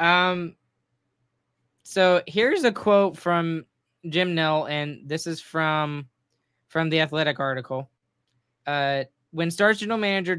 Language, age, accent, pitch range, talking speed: English, 10-29, American, 145-175 Hz, 120 wpm